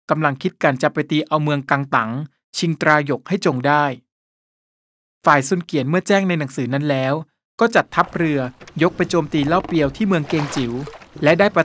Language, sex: Thai, male